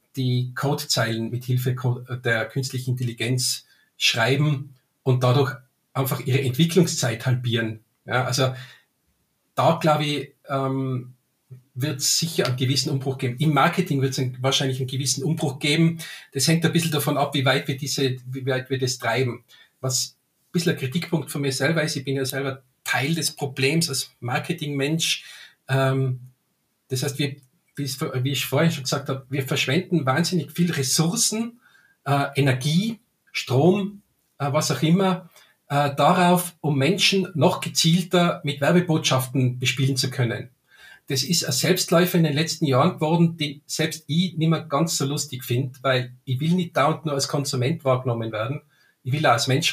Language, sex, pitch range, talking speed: German, male, 130-155 Hz, 160 wpm